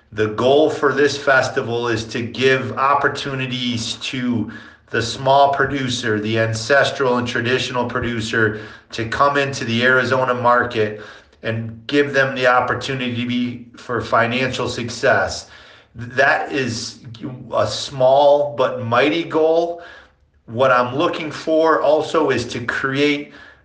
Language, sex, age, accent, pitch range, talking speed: English, male, 40-59, American, 115-130 Hz, 125 wpm